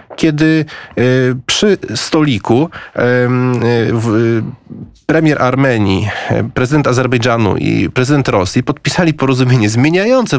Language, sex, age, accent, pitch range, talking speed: Polish, male, 30-49, native, 120-160 Hz, 75 wpm